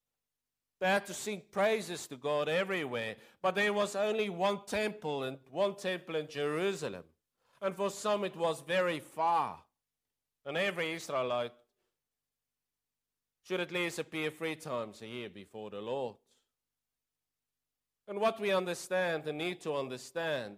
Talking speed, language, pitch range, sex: 140 wpm, English, 150-190 Hz, male